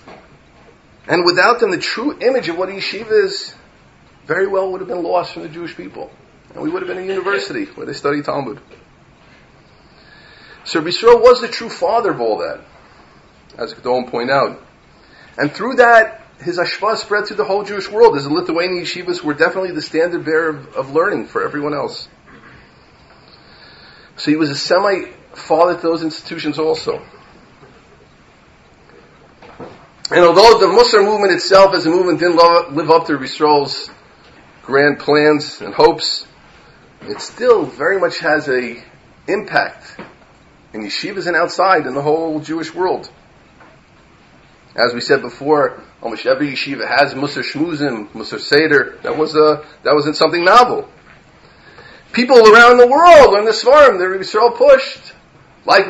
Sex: male